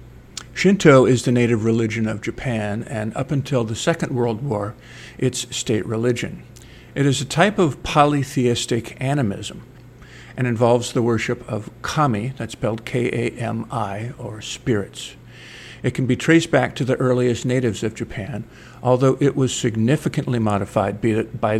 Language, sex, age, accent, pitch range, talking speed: English, male, 50-69, American, 110-130 Hz, 150 wpm